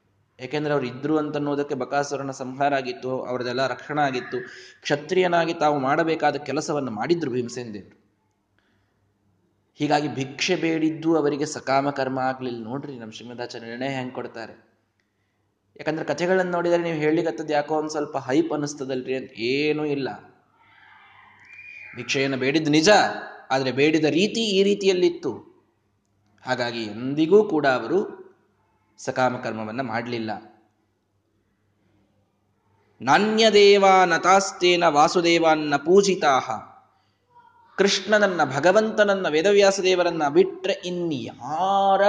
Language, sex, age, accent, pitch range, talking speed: Kannada, male, 20-39, native, 115-170 Hz, 90 wpm